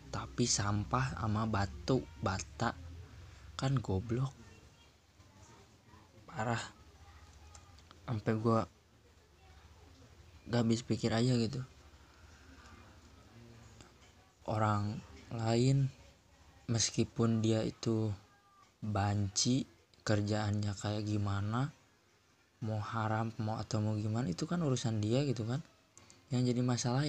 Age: 20-39